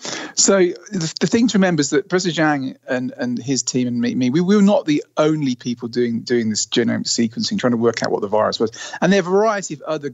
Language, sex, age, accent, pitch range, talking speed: English, male, 40-59, British, 120-195 Hz, 250 wpm